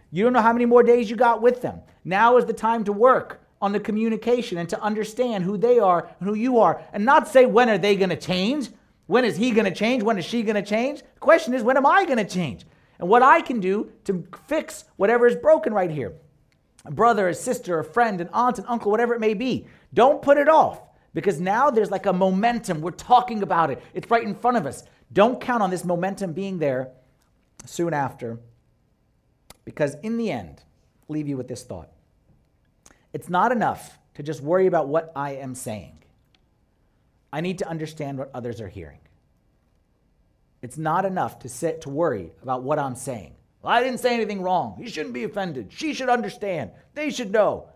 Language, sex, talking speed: English, male, 210 wpm